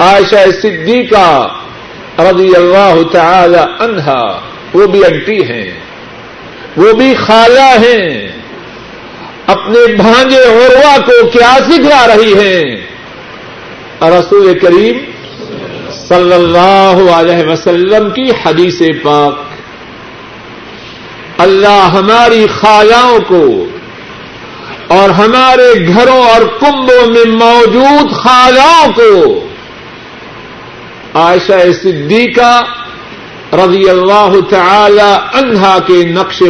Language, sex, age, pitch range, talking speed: Urdu, male, 50-69, 175-240 Hz, 85 wpm